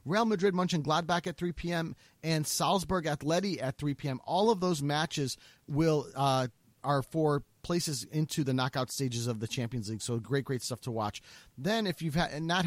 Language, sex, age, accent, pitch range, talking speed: English, male, 30-49, American, 135-175 Hz, 195 wpm